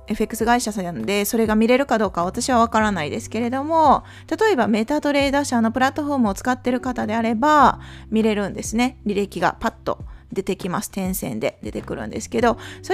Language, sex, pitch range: Japanese, female, 215-300 Hz